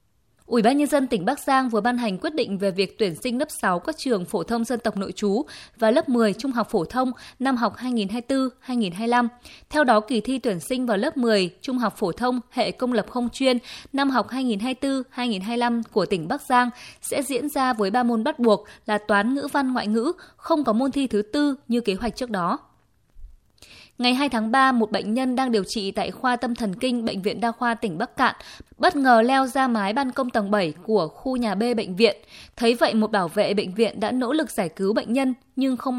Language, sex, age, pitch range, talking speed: Vietnamese, female, 20-39, 215-260 Hz, 230 wpm